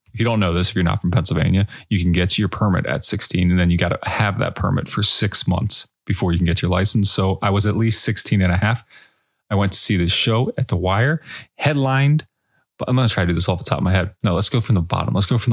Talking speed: 295 wpm